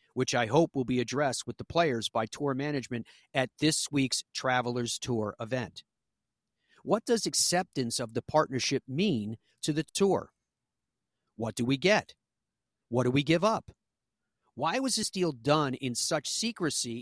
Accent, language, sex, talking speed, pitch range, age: American, English, male, 160 wpm, 120-155 Hz, 50-69